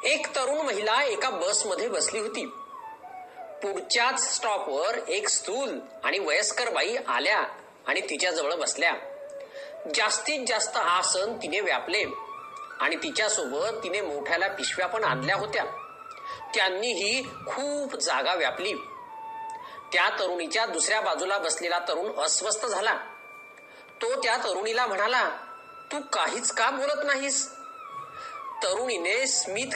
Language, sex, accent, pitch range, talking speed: Marathi, male, native, 260-425 Hz, 60 wpm